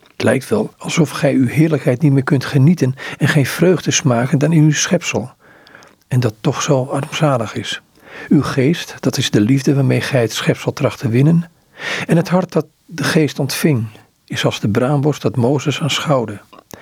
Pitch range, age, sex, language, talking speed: 125-150 Hz, 50-69, male, Dutch, 185 wpm